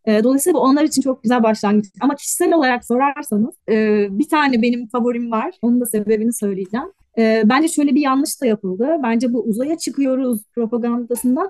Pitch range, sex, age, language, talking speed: 215-255 Hz, female, 30-49, Turkish, 170 wpm